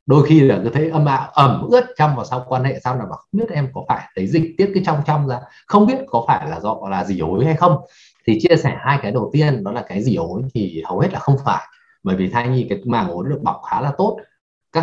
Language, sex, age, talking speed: Vietnamese, male, 20-39, 290 wpm